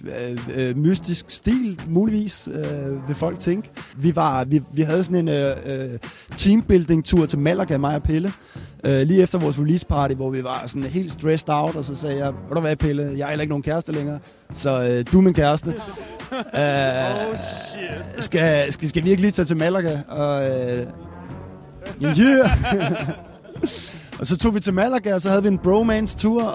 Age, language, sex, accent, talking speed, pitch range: 30-49, Danish, male, native, 175 wpm, 140-175 Hz